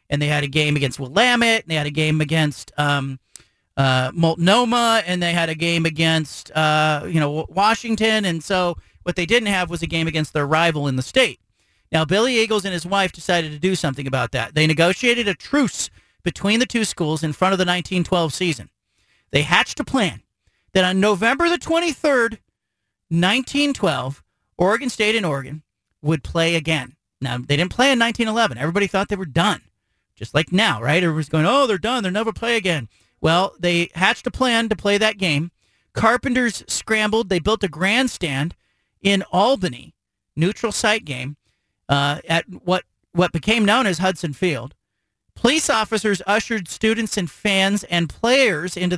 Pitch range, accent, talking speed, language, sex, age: 150-215 Hz, American, 180 wpm, English, male, 40-59